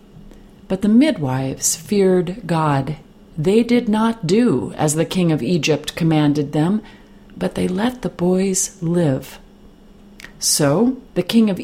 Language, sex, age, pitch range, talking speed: English, female, 40-59, 160-215 Hz, 135 wpm